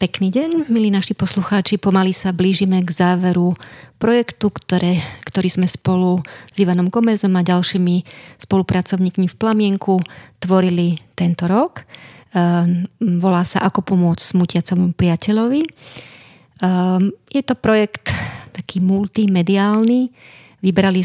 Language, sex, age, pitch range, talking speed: Slovak, female, 30-49, 175-200 Hz, 110 wpm